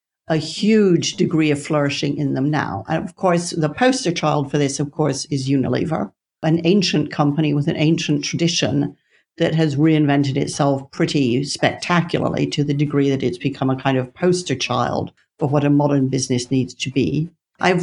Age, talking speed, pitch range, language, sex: 60-79, 180 wpm, 145-170 Hz, English, female